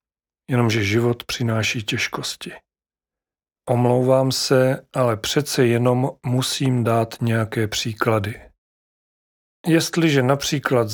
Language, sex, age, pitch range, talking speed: Czech, male, 40-59, 110-130 Hz, 80 wpm